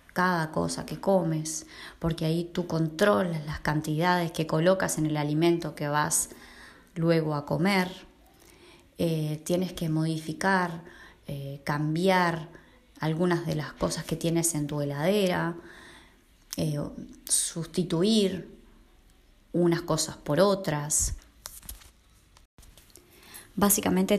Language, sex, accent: Spanish, female, Argentinian